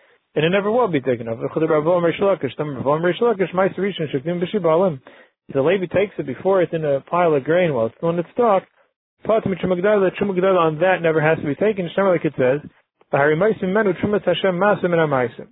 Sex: male